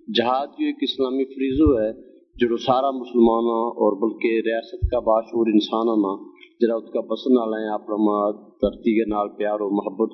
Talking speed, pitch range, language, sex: 155 wpm, 110-135 Hz, Urdu, male